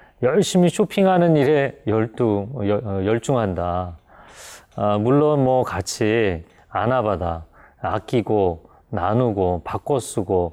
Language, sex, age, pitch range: Korean, male, 30-49, 100-145 Hz